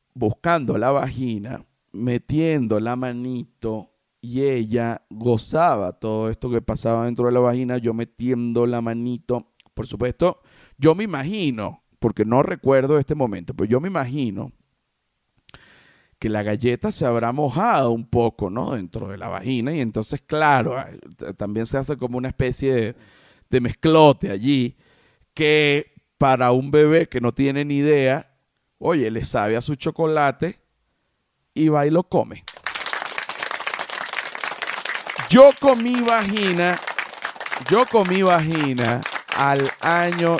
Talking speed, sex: 130 wpm, male